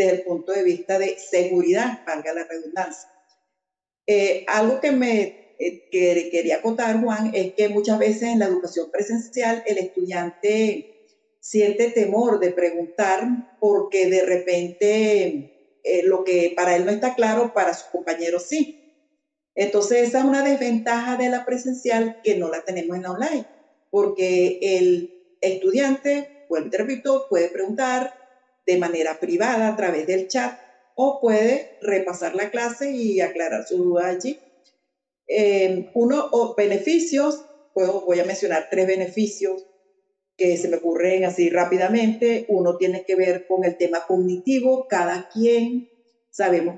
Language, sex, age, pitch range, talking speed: Spanish, female, 50-69, 180-240 Hz, 150 wpm